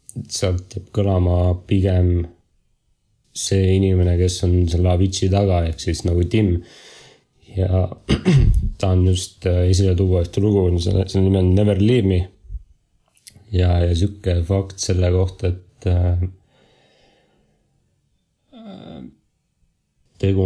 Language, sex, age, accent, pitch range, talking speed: English, male, 30-49, Finnish, 90-100 Hz, 105 wpm